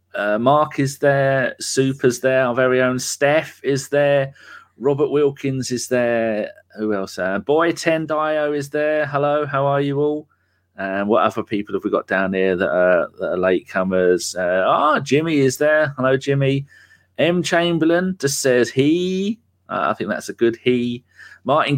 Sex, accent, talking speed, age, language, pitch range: male, British, 175 wpm, 30-49, English, 110-150 Hz